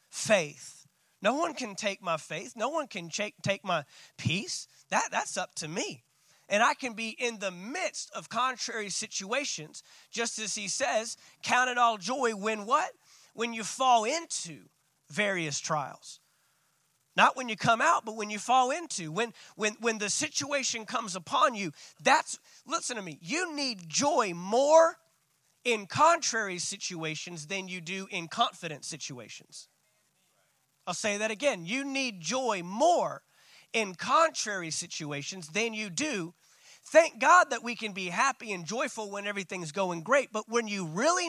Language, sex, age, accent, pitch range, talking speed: English, male, 30-49, American, 180-260 Hz, 160 wpm